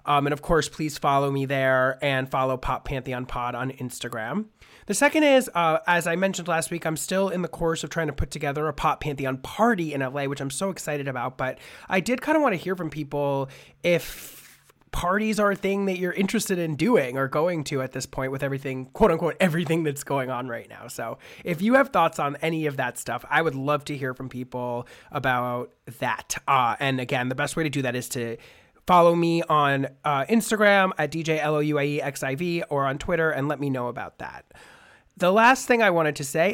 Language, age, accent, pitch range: English, 30-49, American, 130-170 Hz